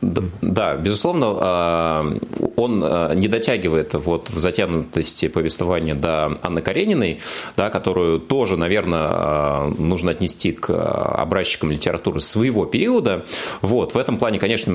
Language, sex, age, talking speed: Russian, male, 30-49, 115 wpm